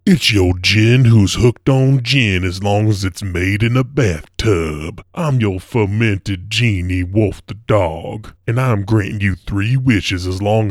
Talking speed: 170 wpm